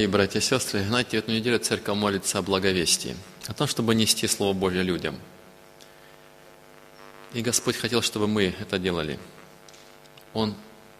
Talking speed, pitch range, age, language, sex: 145 wpm, 90-110 Hz, 20-39, Russian, male